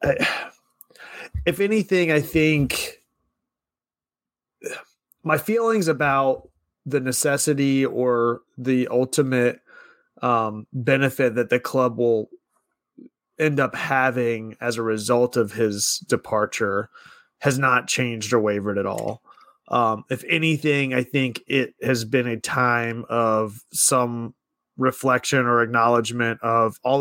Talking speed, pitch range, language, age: 115 wpm, 120-135 Hz, English, 30-49